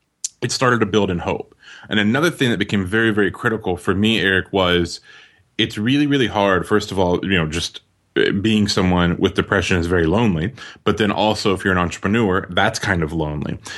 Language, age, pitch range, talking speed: English, 20-39, 90-105 Hz, 200 wpm